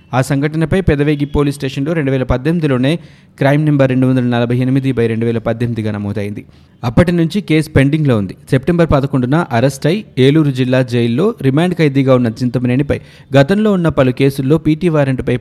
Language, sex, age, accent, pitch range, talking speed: Telugu, male, 20-39, native, 115-145 Hz, 155 wpm